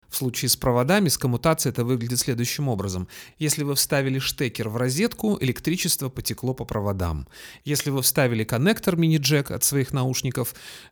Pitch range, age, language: 110-145 Hz, 30-49, Russian